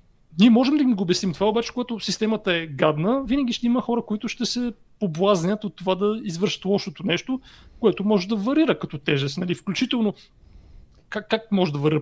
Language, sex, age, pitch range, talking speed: Bulgarian, male, 30-49, 165-225 Hz, 190 wpm